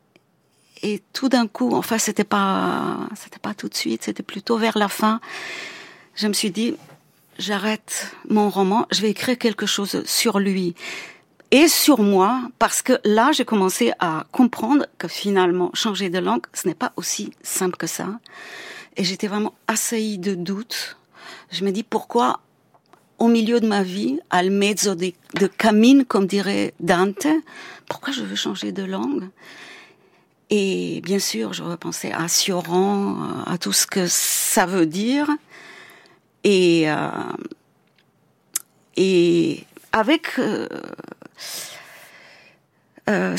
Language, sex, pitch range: French, female, 185-255 Hz